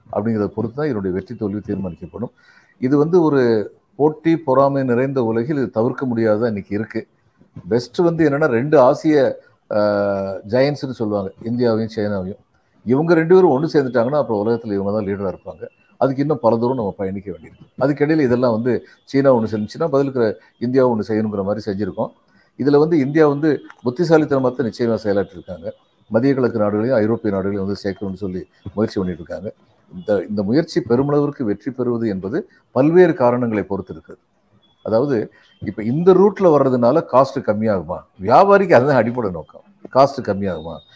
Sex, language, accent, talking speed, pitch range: male, Tamil, native, 145 wpm, 105-145 Hz